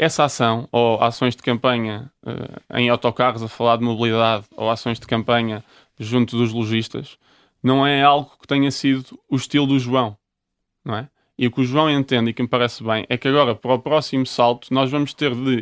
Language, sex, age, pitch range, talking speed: Portuguese, male, 20-39, 120-155 Hz, 210 wpm